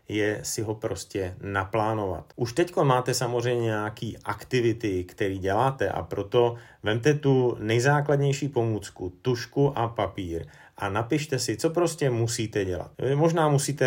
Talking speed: 135 wpm